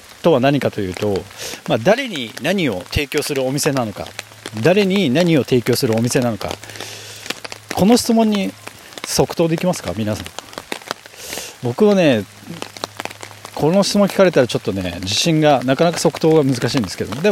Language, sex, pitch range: Japanese, male, 110-165 Hz